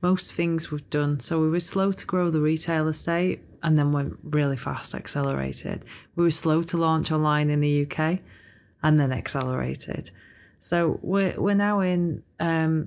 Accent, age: British, 20-39